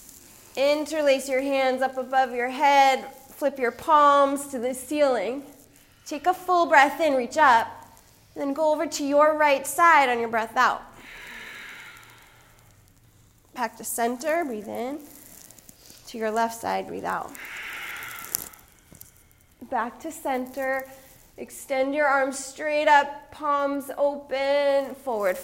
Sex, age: female, 30-49